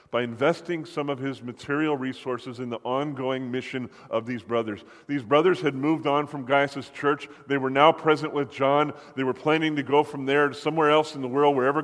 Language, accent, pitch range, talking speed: English, American, 130-160 Hz, 215 wpm